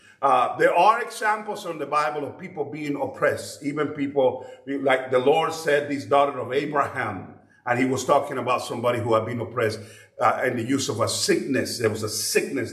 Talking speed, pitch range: 200 wpm, 130-185 Hz